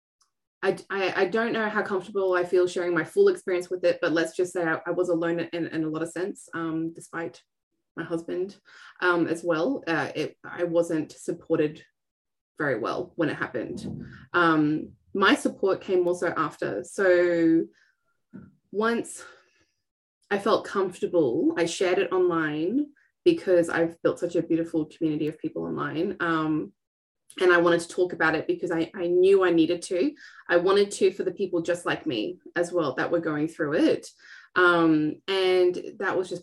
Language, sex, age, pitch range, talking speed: English, female, 20-39, 165-190 Hz, 175 wpm